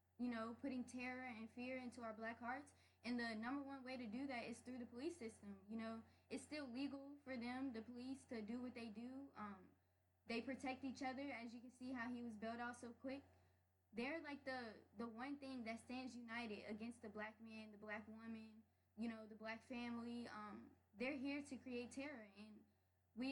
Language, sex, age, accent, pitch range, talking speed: English, female, 10-29, American, 225-255 Hz, 210 wpm